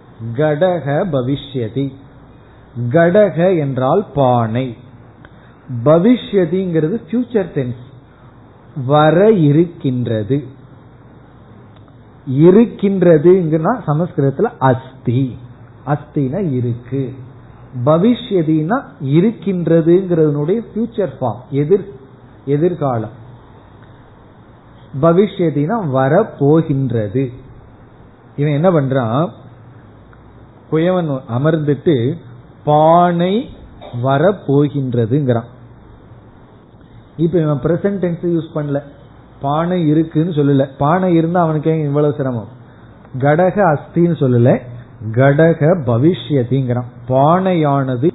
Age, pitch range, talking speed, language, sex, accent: 50-69, 125-165 Hz, 35 wpm, Tamil, male, native